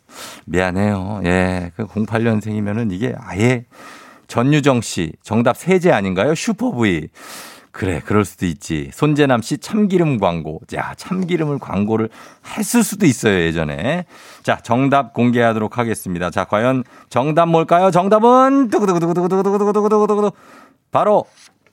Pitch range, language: 105-175 Hz, Korean